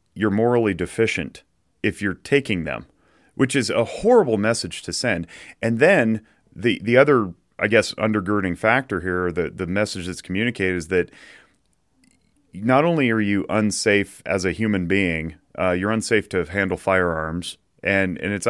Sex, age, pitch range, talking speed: male, 30-49, 90-110 Hz, 160 wpm